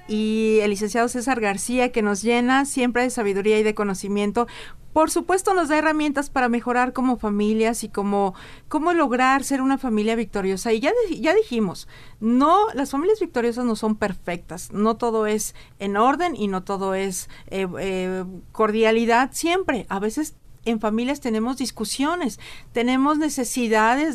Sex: female